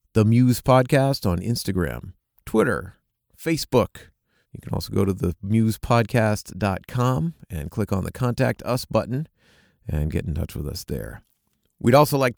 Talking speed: 145 wpm